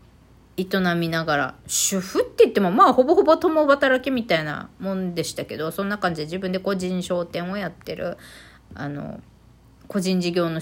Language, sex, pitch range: Japanese, female, 165-260 Hz